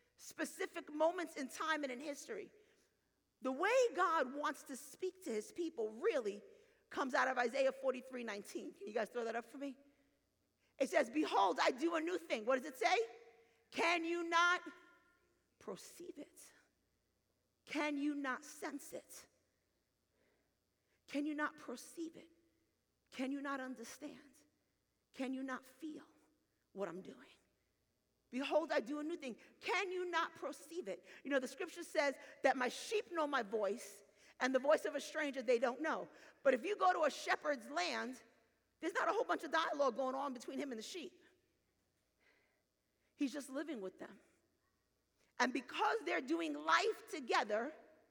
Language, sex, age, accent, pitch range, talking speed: English, female, 40-59, American, 260-340 Hz, 165 wpm